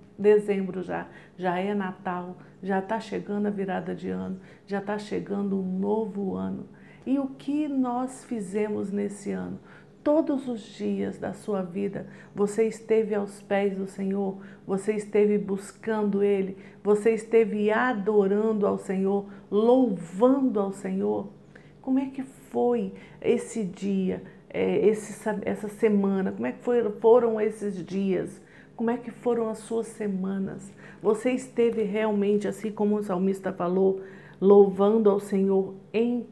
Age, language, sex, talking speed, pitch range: 50-69, Portuguese, female, 135 wpm, 195-230 Hz